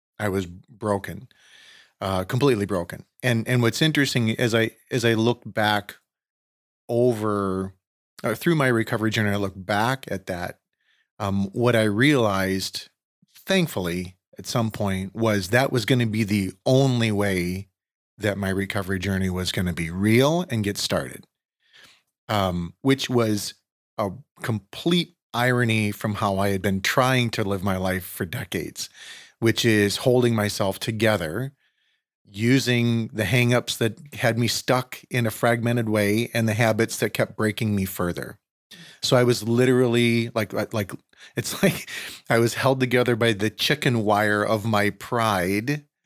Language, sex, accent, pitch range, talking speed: English, male, American, 100-120 Hz, 150 wpm